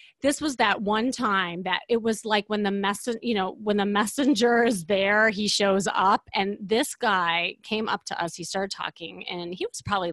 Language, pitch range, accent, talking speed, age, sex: English, 170-225 Hz, American, 215 wpm, 30-49, female